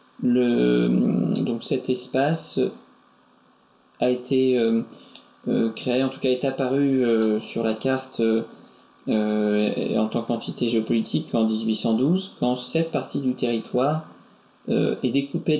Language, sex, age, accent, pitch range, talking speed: French, male, 20-39, French, 110-140 Hz, 125 wpm